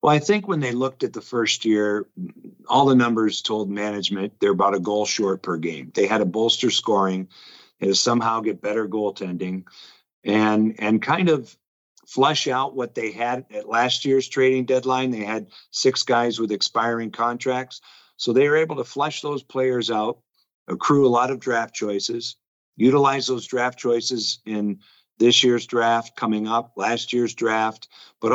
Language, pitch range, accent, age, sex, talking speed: English, 110-130 Hz, American, 50-69, male, 175 wpm